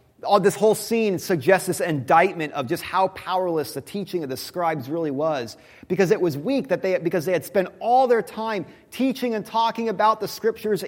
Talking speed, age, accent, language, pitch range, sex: 205 wpm, 30-49, American, English, 165-225 Hz, male